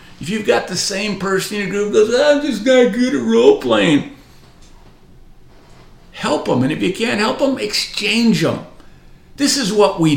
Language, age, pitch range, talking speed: English, 50-69, 145-225 Hz, 185 wpm